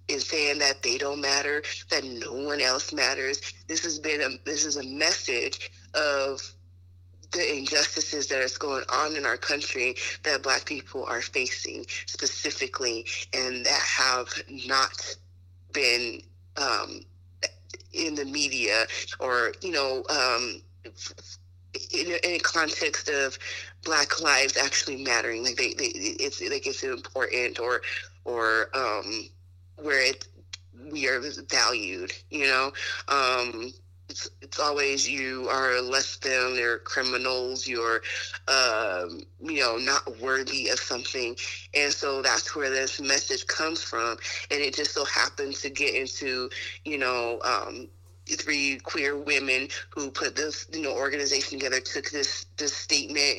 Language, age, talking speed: English, 30-49, 140 wpm